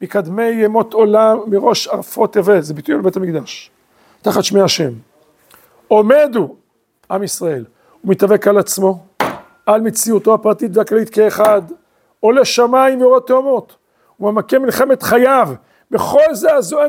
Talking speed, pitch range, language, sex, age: 120 wpm, 205-255 Hz, Hebrew, male, 50-69